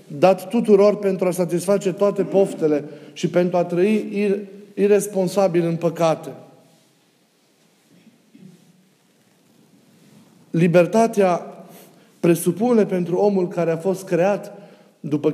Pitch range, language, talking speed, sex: 170-205 Hz, Romanian, 90 wpm, male